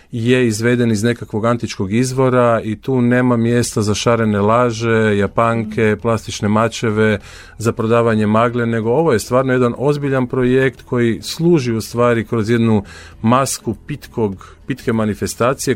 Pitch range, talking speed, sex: 100-120 Hz, 135 wpm, male